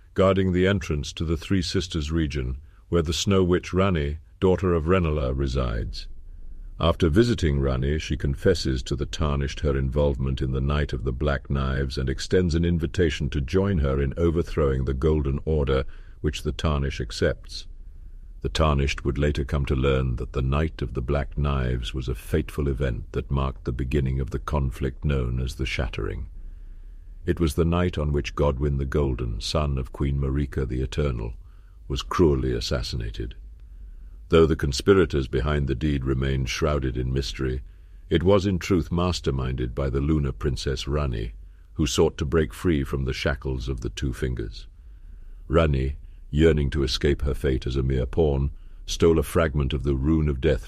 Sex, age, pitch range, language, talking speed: male, 50-69, 65-85 Hz, English, 175 wpm